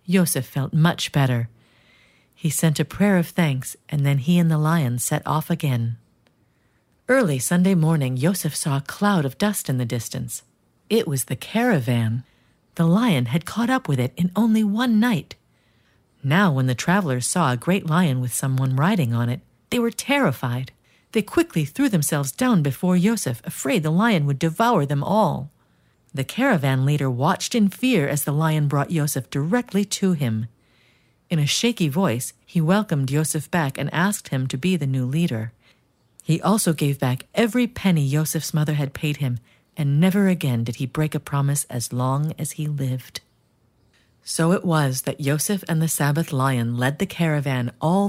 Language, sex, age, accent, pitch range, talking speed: English, female, 50-69, American, 130-180 Hz, 180 wpm